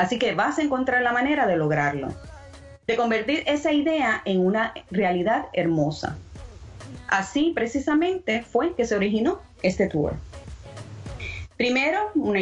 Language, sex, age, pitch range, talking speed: English, female, 30-49, 175-245 Hz, 130 wpm